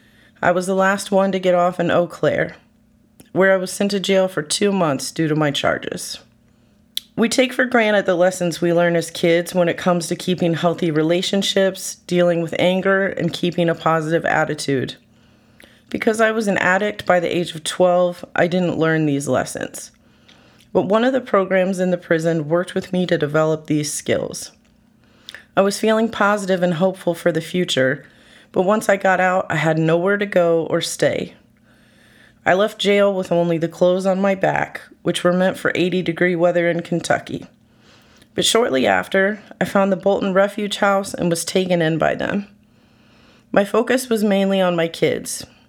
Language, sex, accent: English, female, American